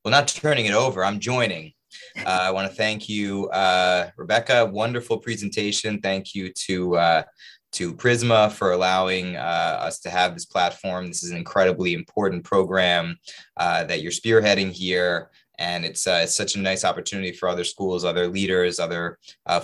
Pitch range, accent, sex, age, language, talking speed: 90-110 Hz, American, male, 20-39, English, 175 wpm